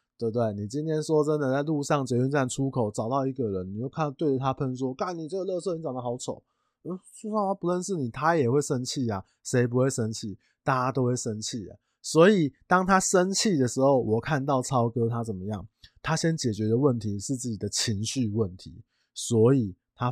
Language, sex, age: Chinese, male, 20-39